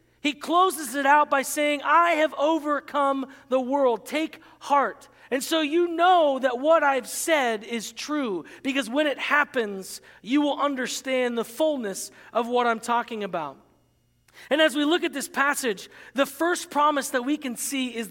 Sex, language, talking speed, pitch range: male, English, 170 wpm, 250-310 Hz